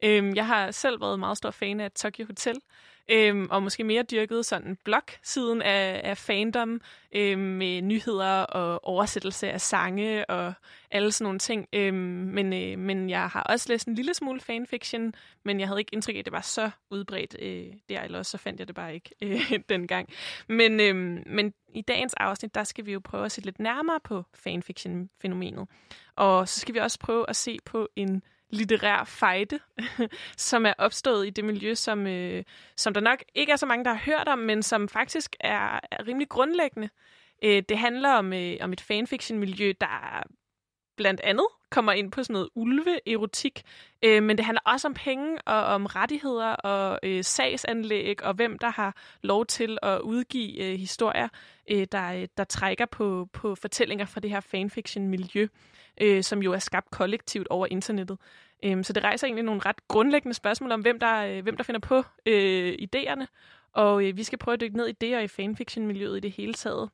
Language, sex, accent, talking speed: Danish, female, native, 180 wpm